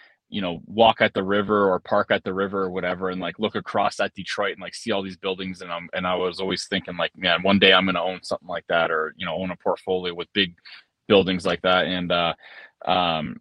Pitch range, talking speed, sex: 95-115 Hz, 255 wpm, male